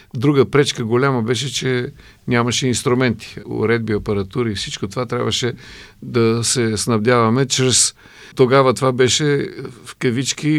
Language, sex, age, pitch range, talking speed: Bulgarian, male, 50-69, 110-135 Hz, 120 wpm